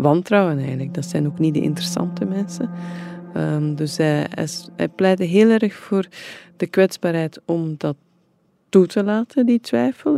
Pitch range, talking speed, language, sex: 145-190 Hz, 145 wpm, Dutch, female